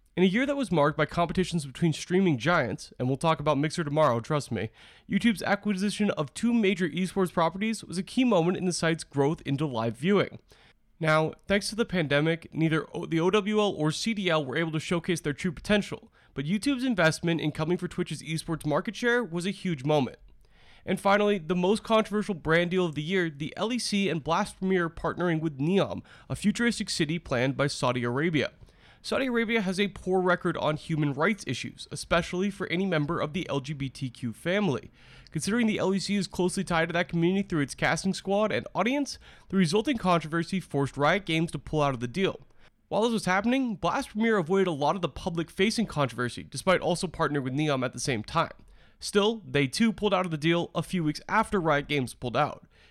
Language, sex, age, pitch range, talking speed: English, male, 30-49, 150-195 Hz, 200 wpm